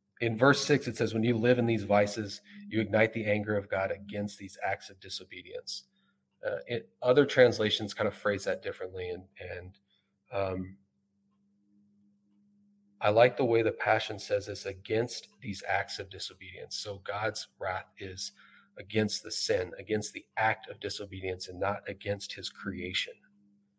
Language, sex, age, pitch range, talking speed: English, male, 30-49, 100-115 Hz, 160 wpm